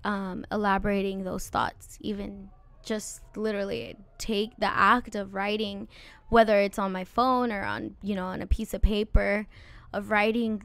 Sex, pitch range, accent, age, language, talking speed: female, 200-230 Hz, American, 10-29, English, 160 wpm